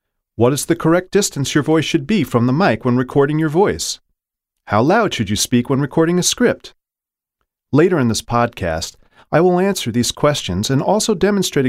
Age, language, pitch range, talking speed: 40-59, English, 100-145 Hz, 190 wpm